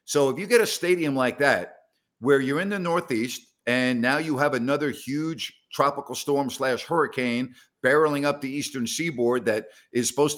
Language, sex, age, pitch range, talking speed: English, male, 50-69, 125-150 Hz, 180 wpm